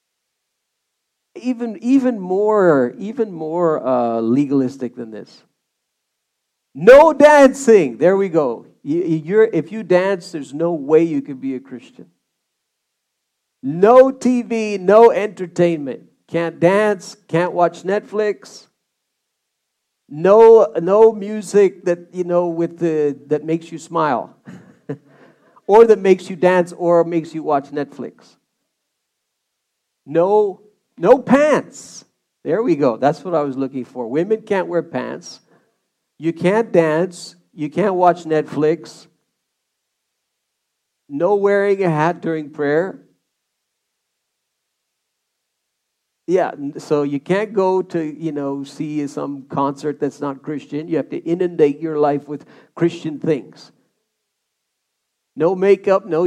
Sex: male